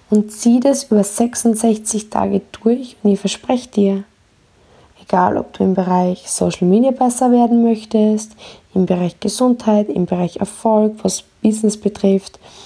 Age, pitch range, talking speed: 20-39, 190-220 Hz, 140 wpm